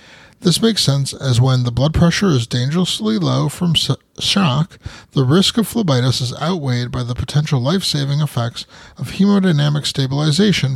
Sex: male